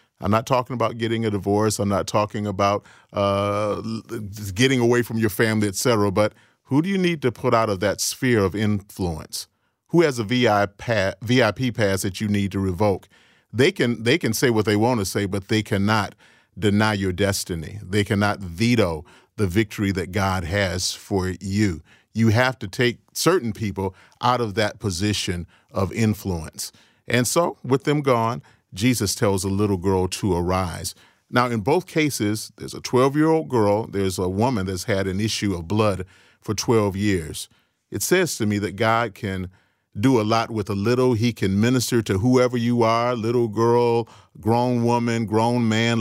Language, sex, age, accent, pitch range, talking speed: English, male, 40-59, American, 100-120 Hz, 180 wpm